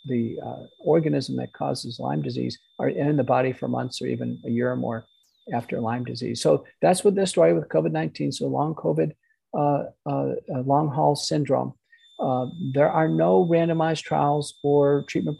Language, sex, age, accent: English, male, 50-69, American